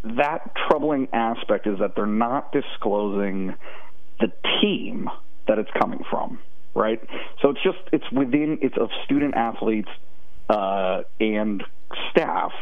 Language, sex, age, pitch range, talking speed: English, male, 40-59, 100-140 Hz, 130 wpm